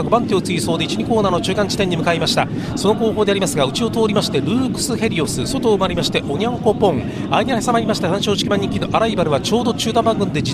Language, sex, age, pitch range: Japanese, male, 40-59, 180-230 Hz